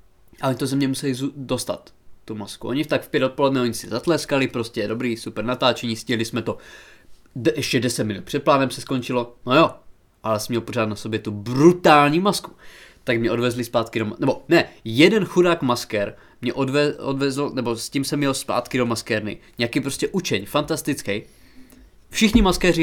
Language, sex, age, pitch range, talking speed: Czech, male, 20-39, 120-155 Hz, 185 wpm